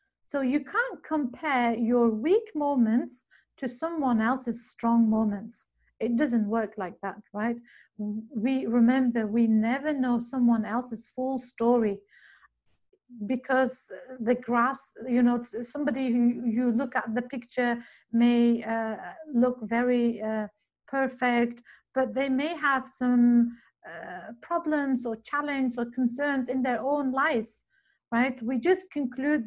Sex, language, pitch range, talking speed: female, English, 225-260 Hz, 130 wpm